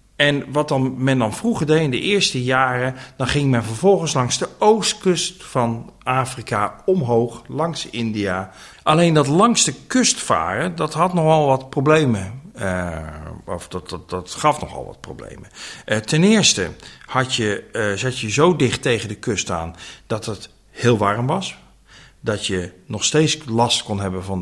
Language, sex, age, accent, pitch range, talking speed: Dutch, male, 50-69, Dutch, 105-160 Hz, 165 wpm